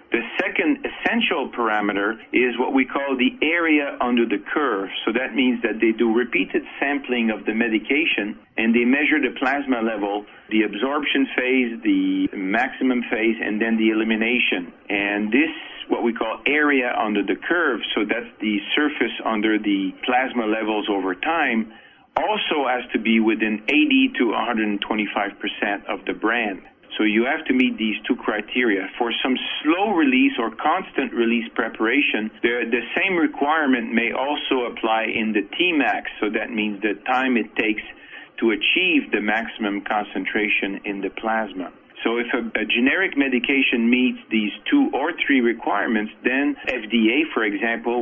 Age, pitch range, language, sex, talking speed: 50-69, 110-145 Hz, English, male, 155 wpm